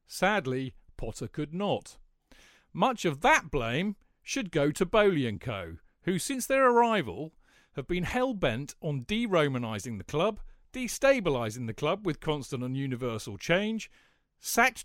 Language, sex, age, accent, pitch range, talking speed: English, male, 40-59, British, 130-205 Hz, 135 wpm